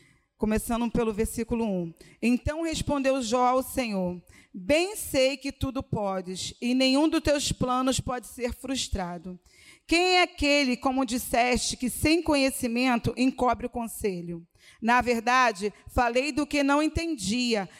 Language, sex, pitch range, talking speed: Portuguese, female, 230-290 Hz, 135 wpm